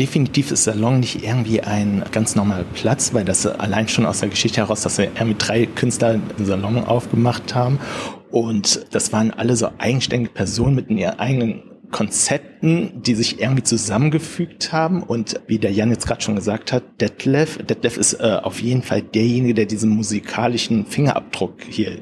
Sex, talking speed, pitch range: male, 175 wpm, 110-130 Hz